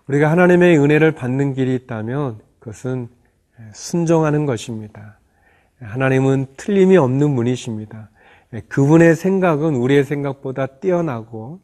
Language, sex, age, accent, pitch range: Korean, male, 40-59, native, 115-145 Hz